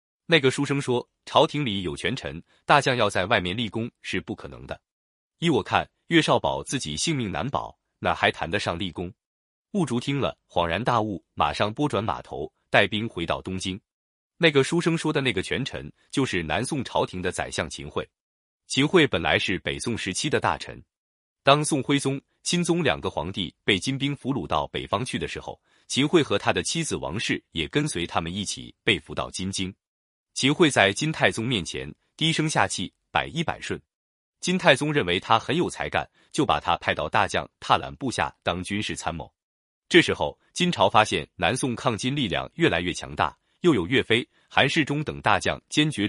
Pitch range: 90-145 Hz